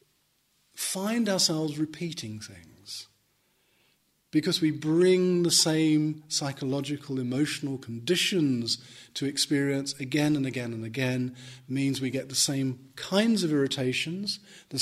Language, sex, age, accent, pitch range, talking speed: English, male, 40-59, British, 120-155 Hz, 115 wpm